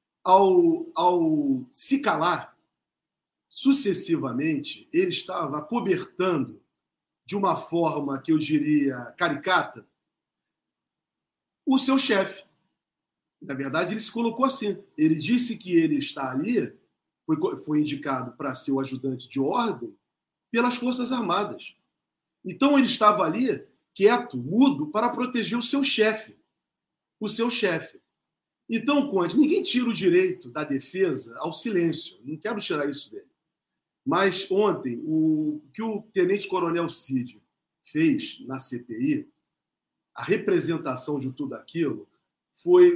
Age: 40-59